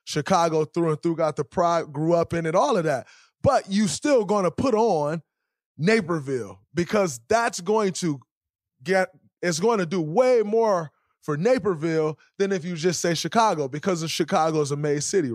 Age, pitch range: 20-39, 150-210 Hz